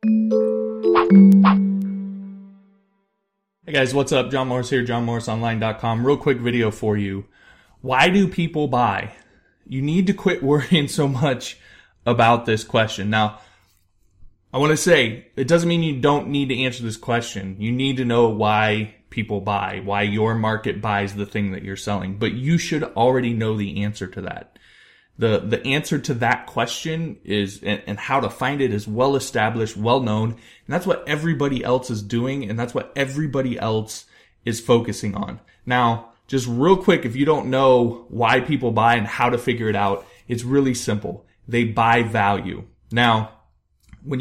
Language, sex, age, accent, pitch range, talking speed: English, male, 20-39, American, 105-140 Hz, 170 wpm